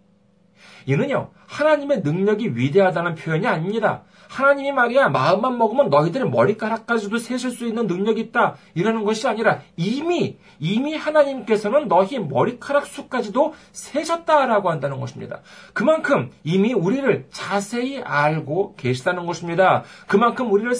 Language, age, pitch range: Korean, 40-59, 175-255 Hz